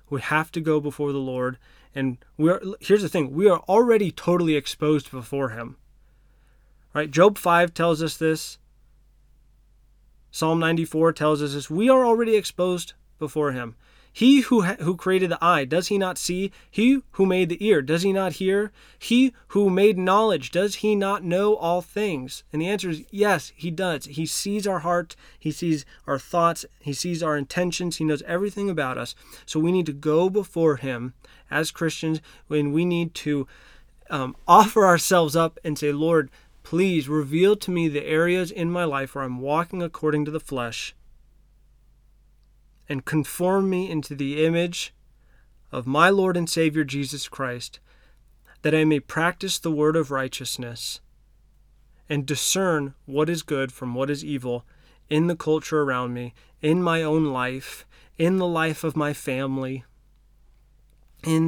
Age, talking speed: 20-39, 170 wpm